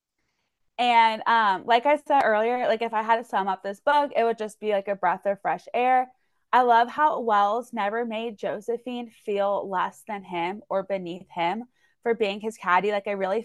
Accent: American